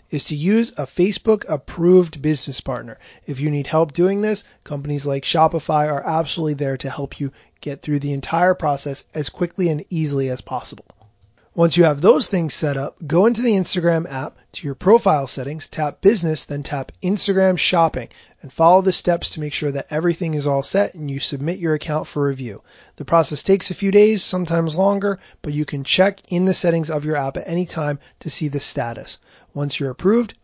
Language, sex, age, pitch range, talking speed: English, male, 30-49, 145-180 Hz, 200 wpm